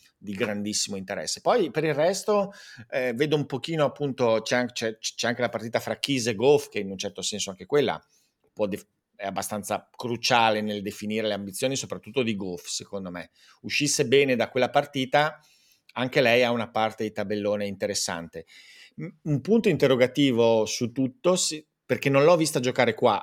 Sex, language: male, Italian